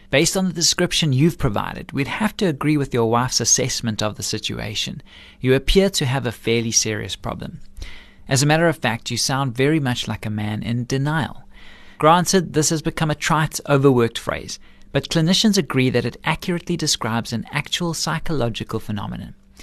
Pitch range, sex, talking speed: 115-155 Hz, male, 175 wpm